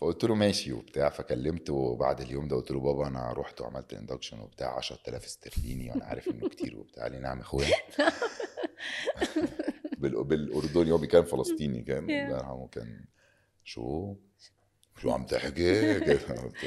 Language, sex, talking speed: Arabic, male, 140 wpm